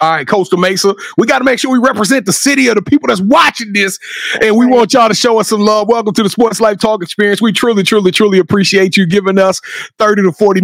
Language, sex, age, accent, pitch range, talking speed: English, male, 30-49, American, 170-215 Hz, 260 wpm